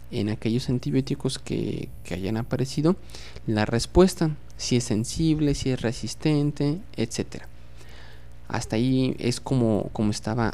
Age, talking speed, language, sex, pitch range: 30-49, 125 wpm, Spanish, male, 105-135 Hz